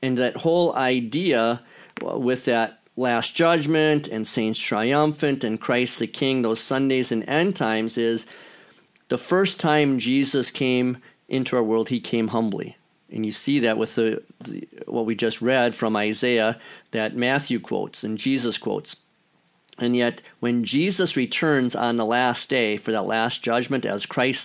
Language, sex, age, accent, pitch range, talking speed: English, male, 50-69, American, 115-140 Hz, 160 wpm